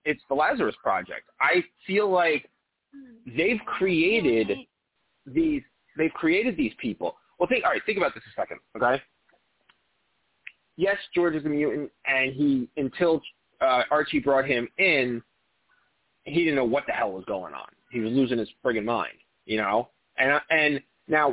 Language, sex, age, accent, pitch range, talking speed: English, male, 30-49, American, 130-170 Hz, 160 wpm